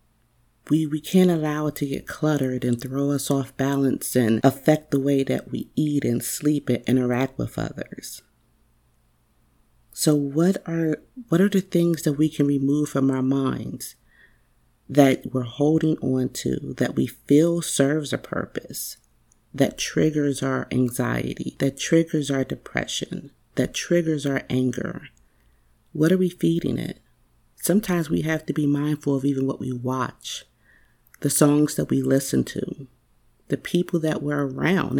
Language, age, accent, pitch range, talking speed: English, 40-59, American, 130-155 Hz, 155 wpm